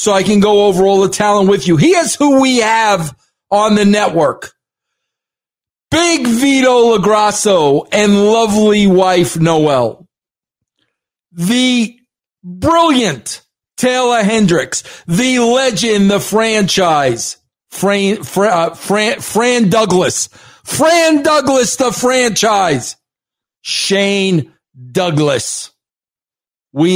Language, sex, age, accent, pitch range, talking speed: English, male, 50-69, American, 185-235 Hz, 100 wpm